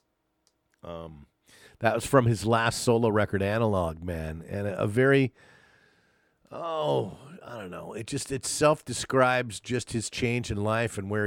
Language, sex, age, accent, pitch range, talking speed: English, male, 50-69, American, 95-115 Hz, 155 wpm